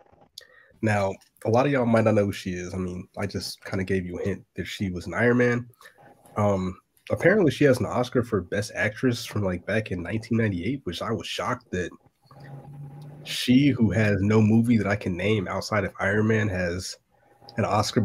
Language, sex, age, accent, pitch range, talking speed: English, male, 30-49, American, 95-120 Hz, 205 wpm